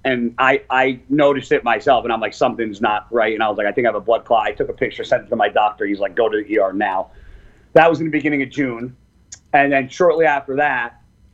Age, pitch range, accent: 40-59, 115-140 Hz, American